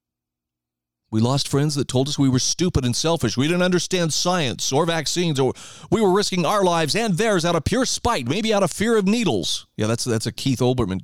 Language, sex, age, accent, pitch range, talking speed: English, male, 40-59, American, 125-175 Hz, 225 wpm